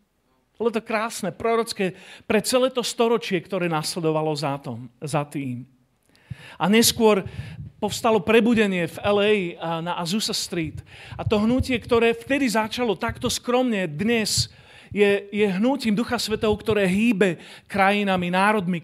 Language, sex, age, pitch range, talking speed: Slovak, male, 40-59, 175-230 Hz, 130 wpm